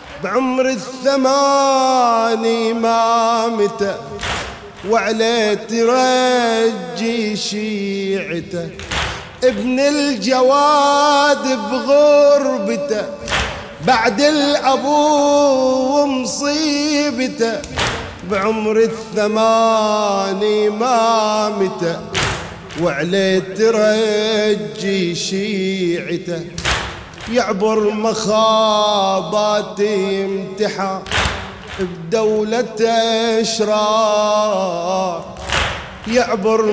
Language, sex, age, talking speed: English, male, 30-49, 40 wpm